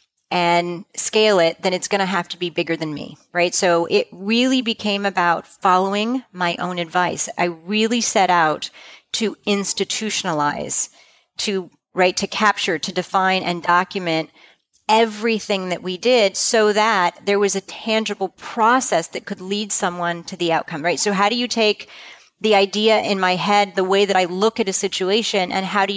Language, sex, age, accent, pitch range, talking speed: English, female, 40-59, American, 175-210 Hz, 175 wpm